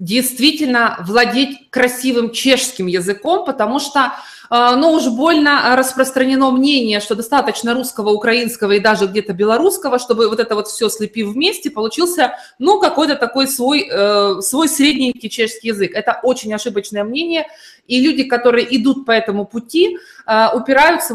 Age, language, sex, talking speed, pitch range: 20-39, Russian, female, 135 wpm, 220-275 Hz